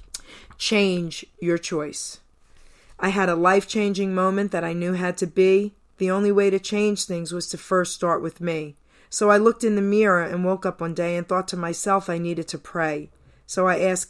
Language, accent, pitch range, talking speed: English, American, 170-195 Hz, 205 wpm